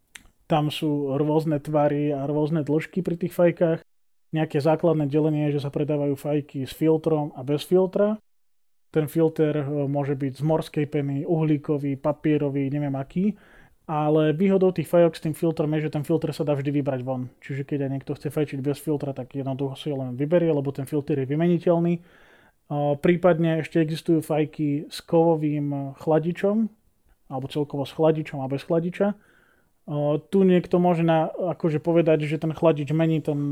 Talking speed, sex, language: 165 wpm, male, Slovak